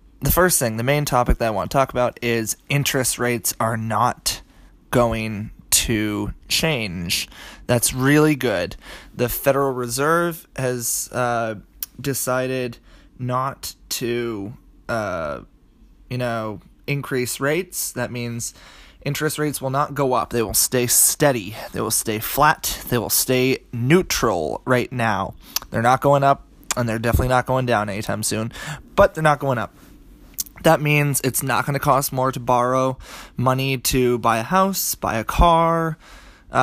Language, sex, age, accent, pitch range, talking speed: English, male, 20-39, American, 115-135 Hz, 150 wpm